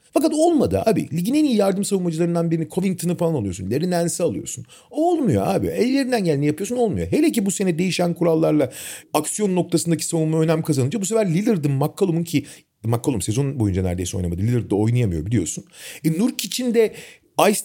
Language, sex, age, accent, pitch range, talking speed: Turkish, male, 40-59, native, 135-205 Hz, 170 wpm